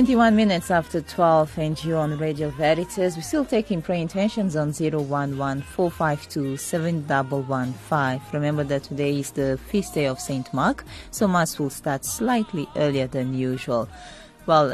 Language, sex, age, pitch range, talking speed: English, female, 20-39, 140-170 Hz, 145 wpm